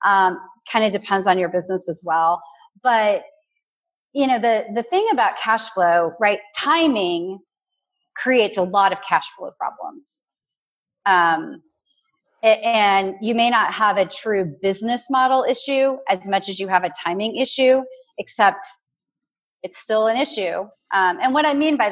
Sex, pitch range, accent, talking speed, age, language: female, 195-275 Hz, American, 155 wpm, 30-49, English